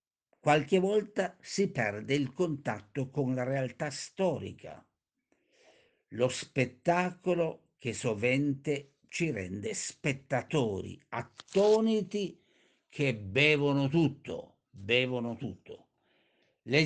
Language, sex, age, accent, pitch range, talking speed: Italian, male, 60-79, native, 125-180 Hz, 85 wpm